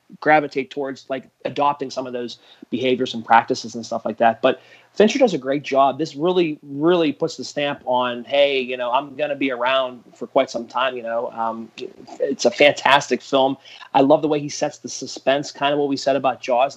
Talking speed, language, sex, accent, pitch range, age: 220 wpm, English, male, American, 135-175 Hz, 30-49